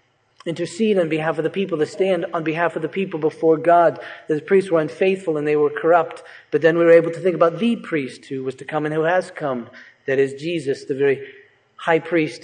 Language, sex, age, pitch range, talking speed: English, male, 40-59, 145-175 Hz, 230 wpm